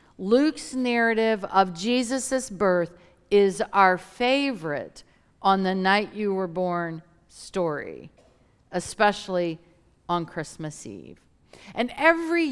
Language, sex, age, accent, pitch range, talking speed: English, female, 50-69, American, 190-265 Hz, 100 wpm